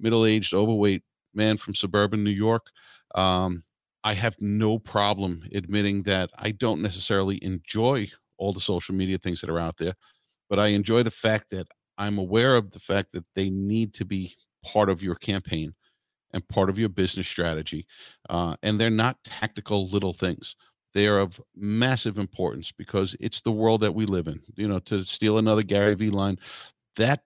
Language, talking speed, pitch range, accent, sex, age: English, 180 wpm, 95-115 Hz, American, male, 50-69